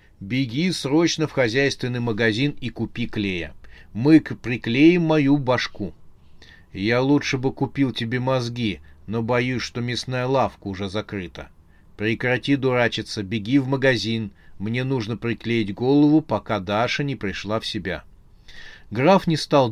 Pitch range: 105-140 Hz